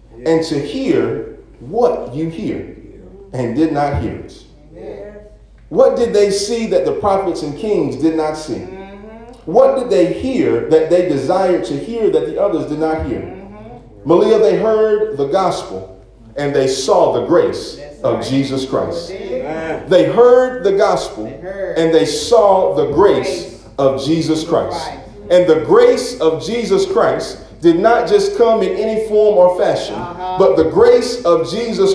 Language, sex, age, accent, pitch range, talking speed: English, male, 40-59, American, 160-260 Hz, 155 wpm